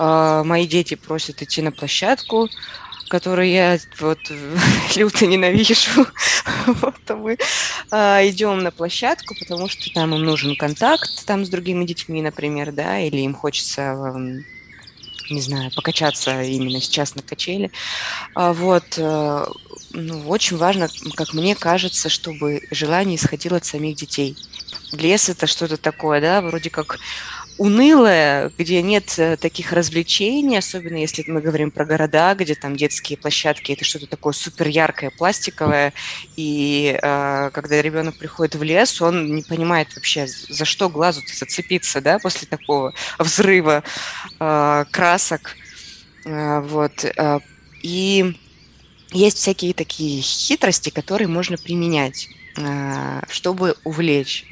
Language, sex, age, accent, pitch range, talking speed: Russian, female, 20-39, native, 150-180 Hz, 130 wpm